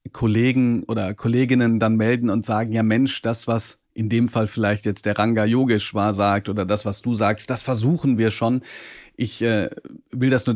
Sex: male